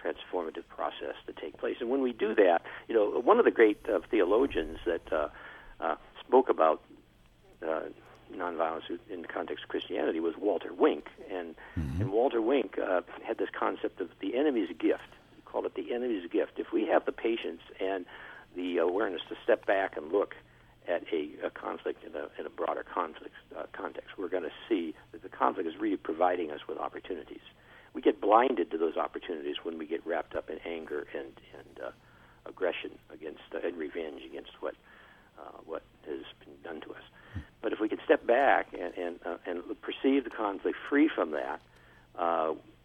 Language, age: English, 60-79